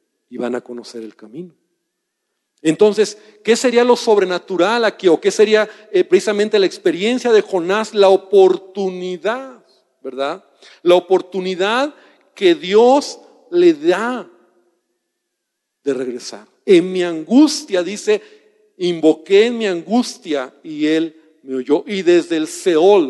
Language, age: Spanish, 50-69